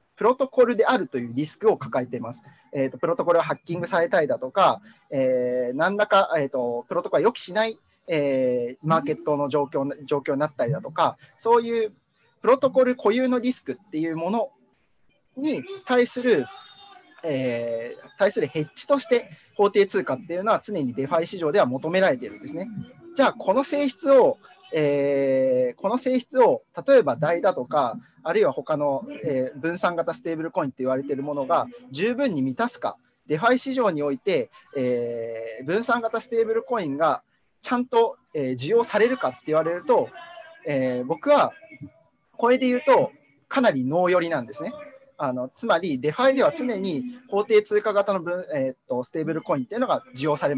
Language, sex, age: Japanese, male, 40-59